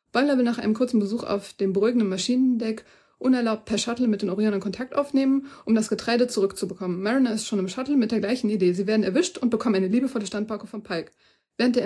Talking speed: 220 wpm